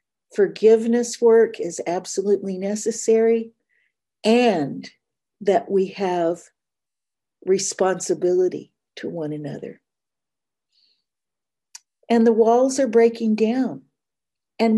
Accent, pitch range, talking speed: American, 190-240 Hz, 80 wpm